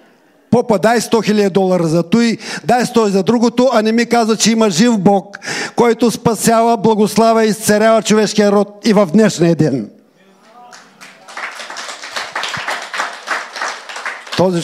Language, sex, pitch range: Bulgarian, male, 150-205 Hz